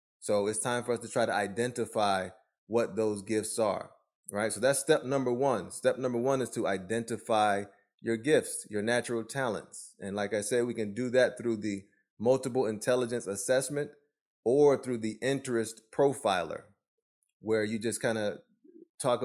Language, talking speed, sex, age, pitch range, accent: English, 170 wpm, male, 20-39, 110-130 Hz, American